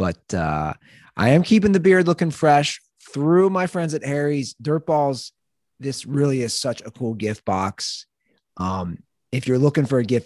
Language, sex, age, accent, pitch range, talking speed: English, male, 30-49, American, 105-150 Hz, 180 wpm